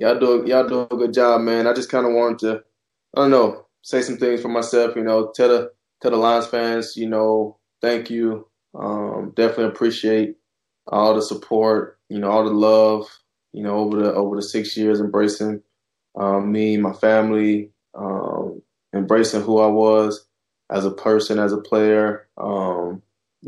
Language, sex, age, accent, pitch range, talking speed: English, male, 20-39, American, 105-115 Hz, 185 wpm